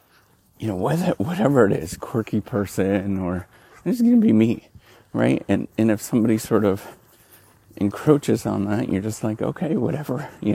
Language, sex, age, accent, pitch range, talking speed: English, male, 40-59, American, 100-120 Hz, 170 wpm